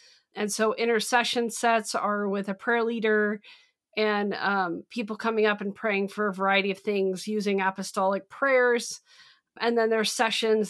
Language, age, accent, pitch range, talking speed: English, 40-59, American, 205-230 Hz, 165 wpm